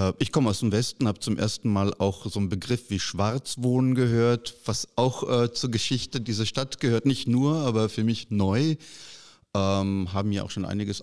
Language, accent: German, German